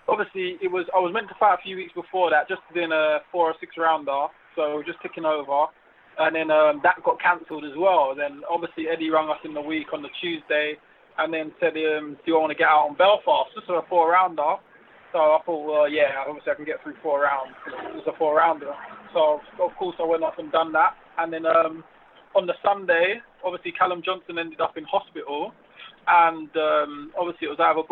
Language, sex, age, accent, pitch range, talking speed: English, male, 20-39, British, 155-175 Hz, 225 wpm